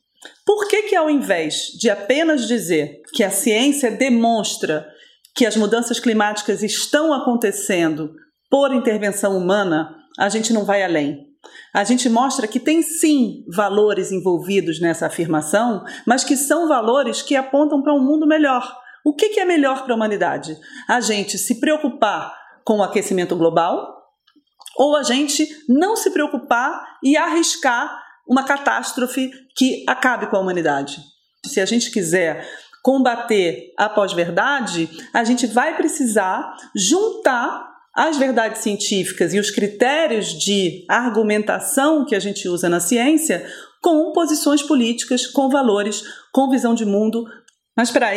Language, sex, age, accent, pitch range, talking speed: Portuguese, female, 40-59, Brazilian, 200-280 Hz, 140 wpm